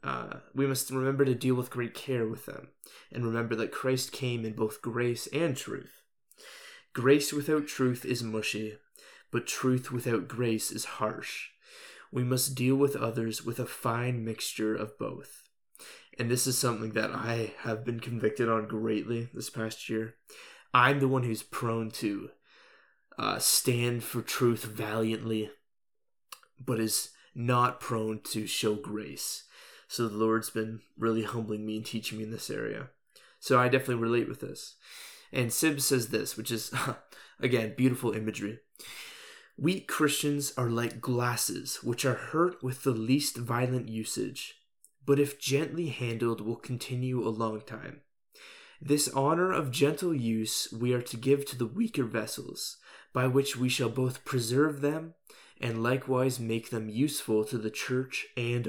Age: 20-39